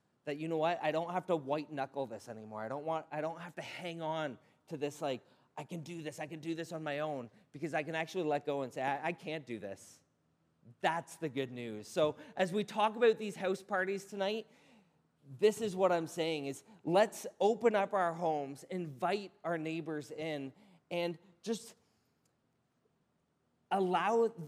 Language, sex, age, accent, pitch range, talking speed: English, male, 30-49, American, 145-195 Hz, 195 wpm